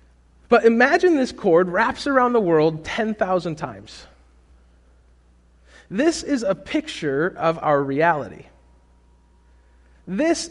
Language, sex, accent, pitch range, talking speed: English, male, American, 145-235 Hz, 105 wpm